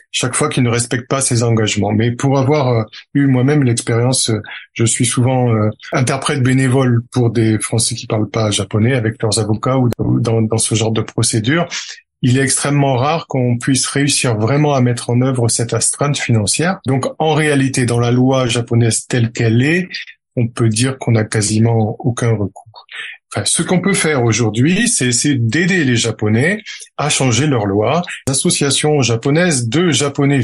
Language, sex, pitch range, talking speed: French, male, 115-145 Hz, 175 wpm